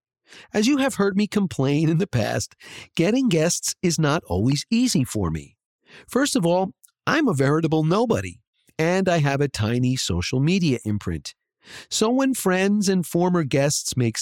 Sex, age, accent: male, 50-69, American